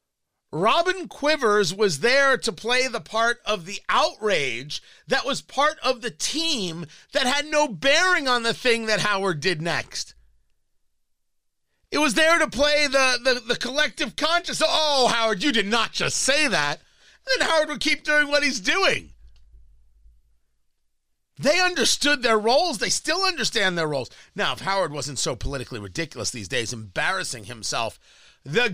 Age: 40-59